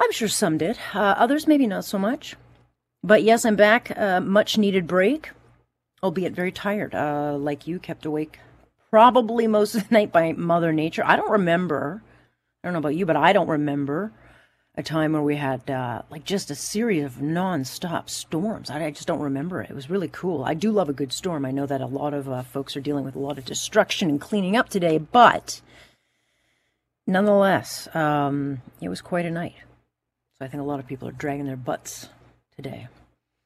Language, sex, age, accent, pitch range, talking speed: English, female, 40-59, American, 140-205 Hz, 200 wpm